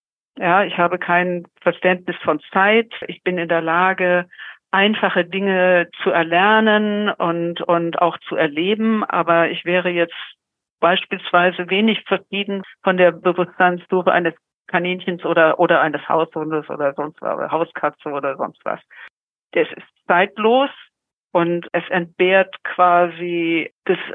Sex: female